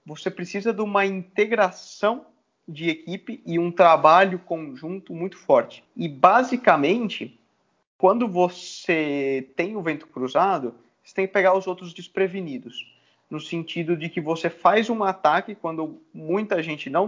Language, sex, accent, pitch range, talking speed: Portuguese, male, Brazilian, 160-200 Hz, 140 wpm